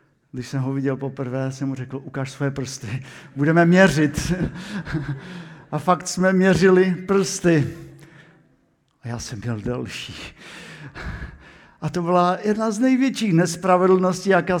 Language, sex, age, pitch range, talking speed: Slovak, male, 50-69, 135-170 Hz, 125 wpm